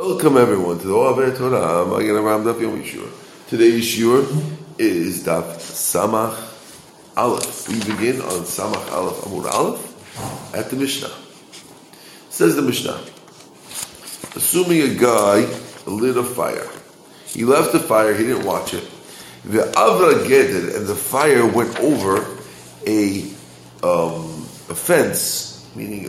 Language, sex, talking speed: English, male, 130 wpm